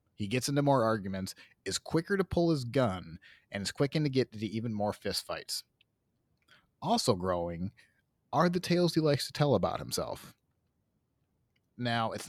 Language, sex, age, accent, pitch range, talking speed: English, male, 30-49, American, 100-150 Hz, 165 wpm